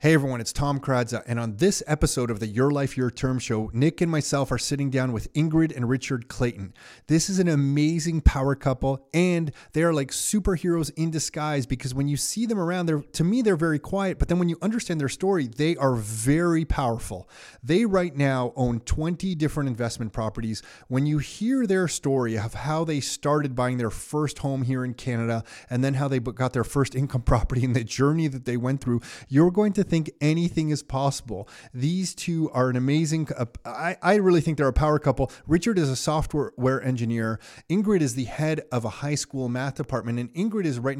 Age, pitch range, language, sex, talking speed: 30-49, 125-160 Hz, English, male, 210 wpm